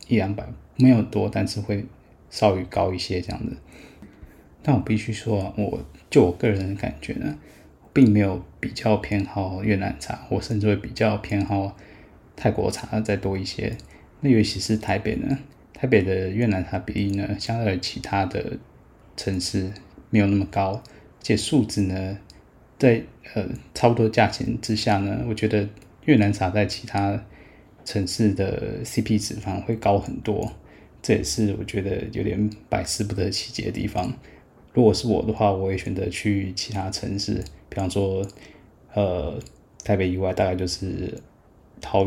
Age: 20-39